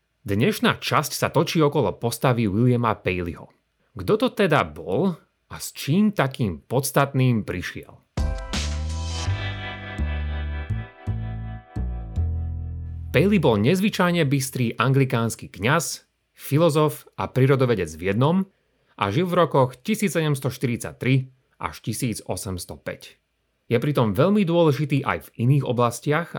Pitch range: 105-150 Hz